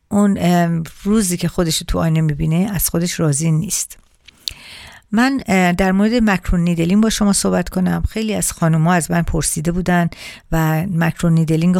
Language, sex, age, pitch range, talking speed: Persian, female, 50-69, 165-185 Hz, 145 wpm